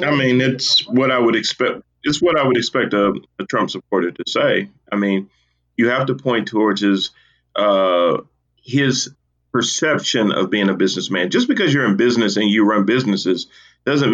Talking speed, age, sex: 185 wpm, 40-59, male